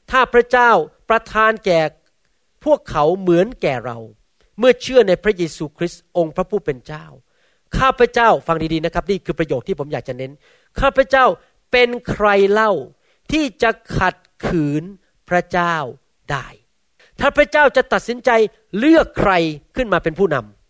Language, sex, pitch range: Thai, male, 145-220 Hz